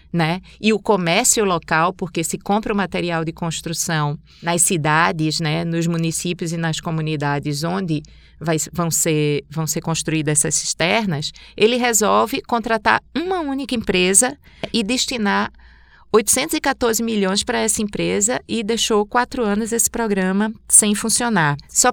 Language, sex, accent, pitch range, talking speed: Portuguese, female, Brazilian, 170-215 Hz, 135 wpm